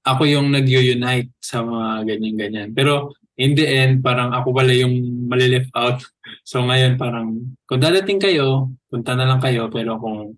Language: Filipino